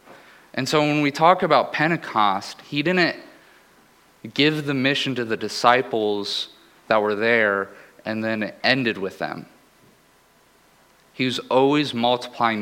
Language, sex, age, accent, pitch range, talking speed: English, male, 30-49, American, 110-130 Hz, 135 wpm